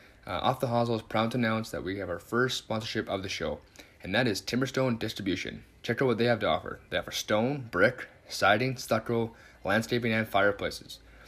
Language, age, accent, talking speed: English, 20-39, American, 200 wpm